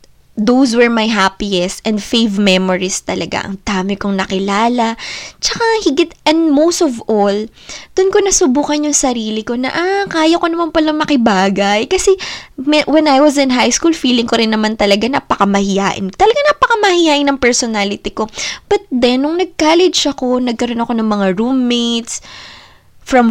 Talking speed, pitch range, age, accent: 155 wpm, 210-290 Hz, 20-39, native